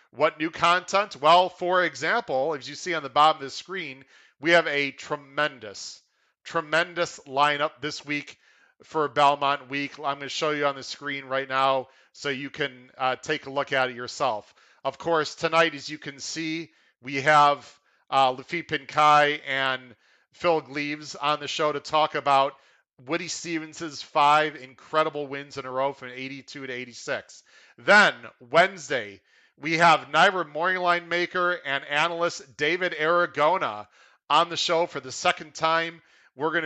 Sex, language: male, English